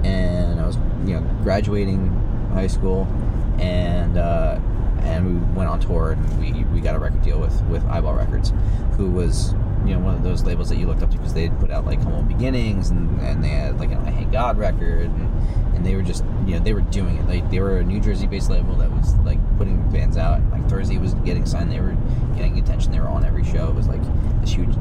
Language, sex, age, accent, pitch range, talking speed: English, male, 30-49, American, 85-105 Hz, 250 wpm